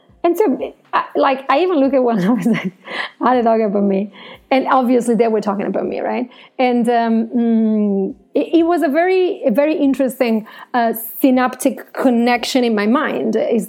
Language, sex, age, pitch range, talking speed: English, female, 30-49, 215-260 Hz, 160 wpm